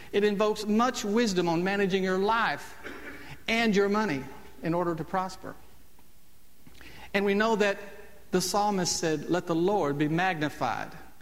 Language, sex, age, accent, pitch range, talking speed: English, male, 50-69, American, 135-205 Hz, 145 wpm